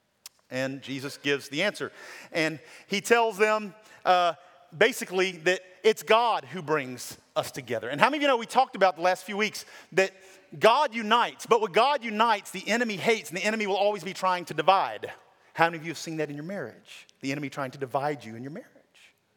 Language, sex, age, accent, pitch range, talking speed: English, male, 40-59, American, 160-225 Hz, 215 wpm